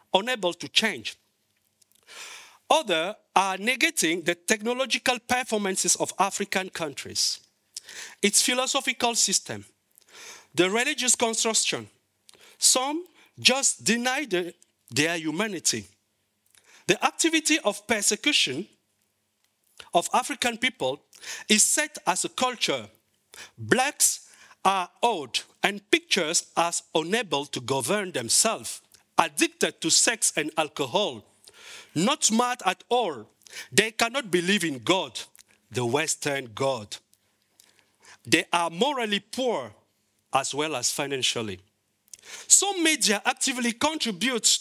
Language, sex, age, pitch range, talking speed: Dutch, male, 50-69, 160-245 Hz, 100 wpm